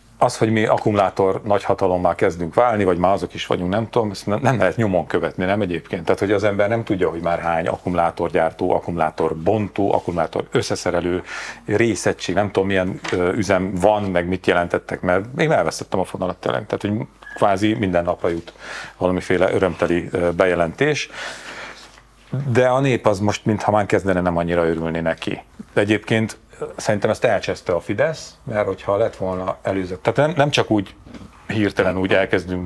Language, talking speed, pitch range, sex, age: Hungarian, 165 wpm, 90-115 Hz, male, 40-59